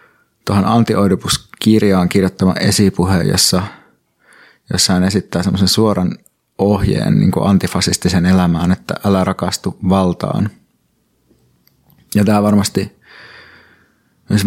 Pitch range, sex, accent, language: 90-100 Hz, male, native, Finnish